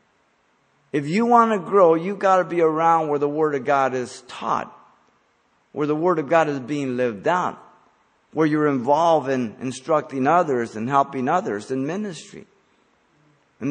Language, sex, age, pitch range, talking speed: English, male, 50-69, 130-175 Hz, 165 wpm